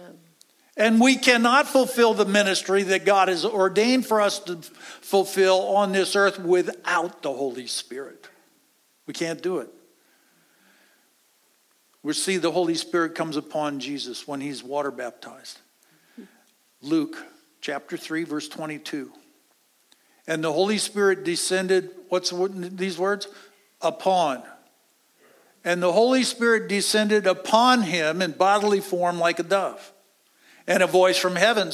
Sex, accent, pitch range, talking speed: male, American, 170-205 Hz, 130 wpm